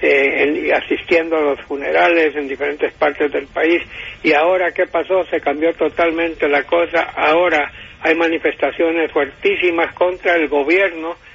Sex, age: male, 60-79